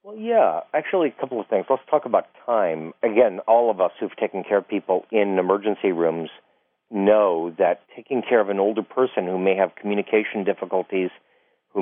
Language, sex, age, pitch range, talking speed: English, male, 50-69, 90-110 Hz, 190 wpm